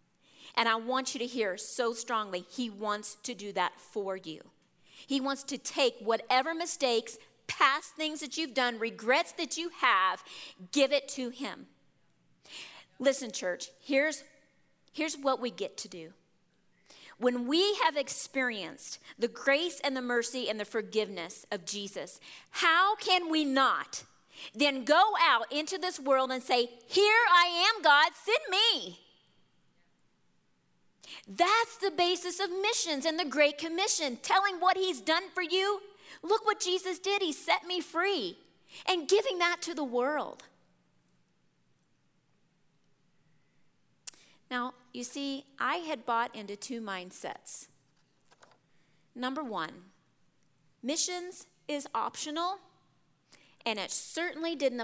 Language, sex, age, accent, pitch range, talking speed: English, female, 40-59, American, 225-345 Hz, 135 wpm